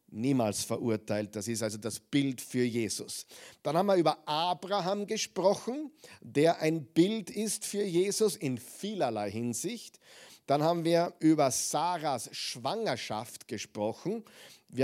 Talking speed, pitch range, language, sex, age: 130 wpm, 125-160 Hz, German, male, 50-69